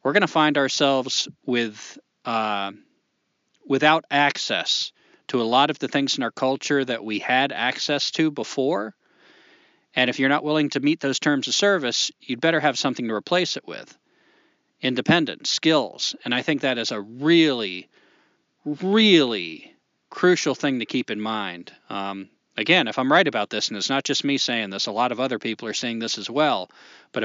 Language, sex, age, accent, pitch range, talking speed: English, male, 40-59, American, 120-155 Hz, 185 wpm